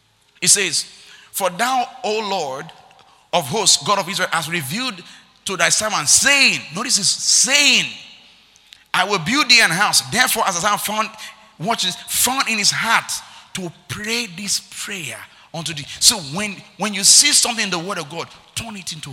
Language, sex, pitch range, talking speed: English, male, 170-245 Hz, 175 wpm